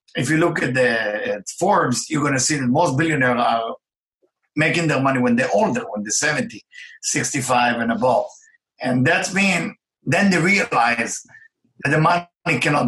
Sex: male